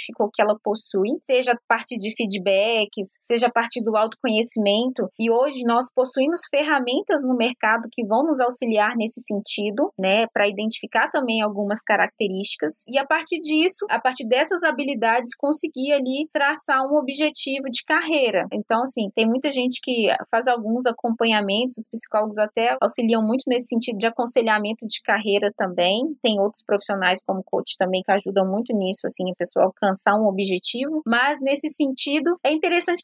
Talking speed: 160 wpm